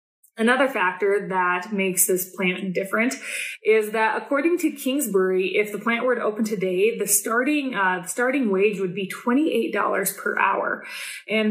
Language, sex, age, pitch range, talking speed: English, female, 20-39, 190-235 Hz, 155 wpm